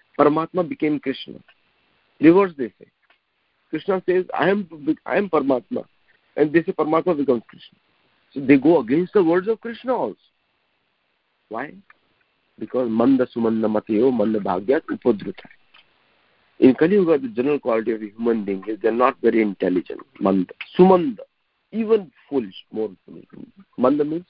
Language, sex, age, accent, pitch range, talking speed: English, male, 50-69, Indian, 115-185 Hz, 125 wpm